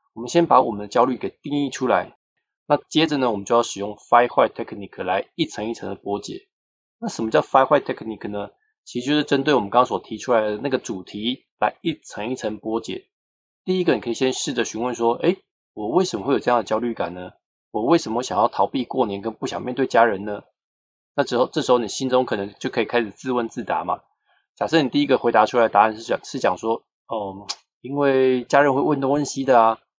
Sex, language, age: male, Chinese, 20-39